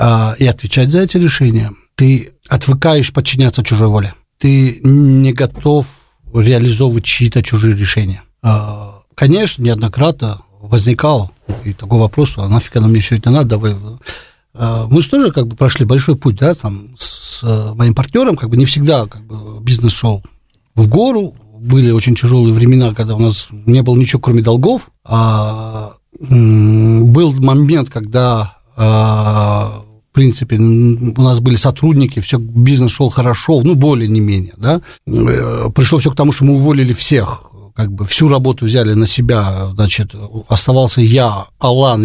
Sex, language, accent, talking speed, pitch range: male, Russian, native, 145 wpm, 110-140 Hz